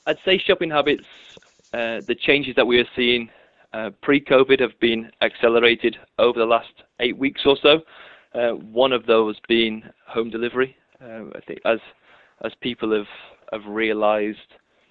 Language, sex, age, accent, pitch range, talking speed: English, male, 20-39, British, 105-115 Hz, 155 wpm